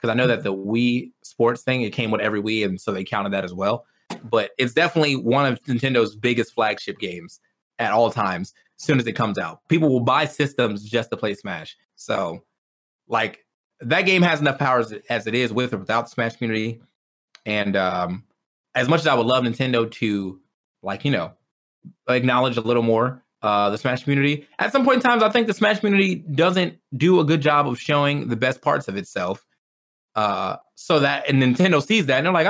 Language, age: English, 20-39